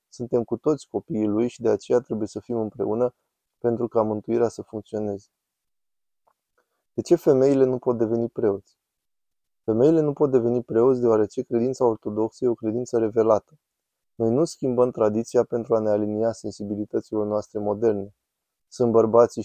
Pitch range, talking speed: 105-125 Hz, 150 wpm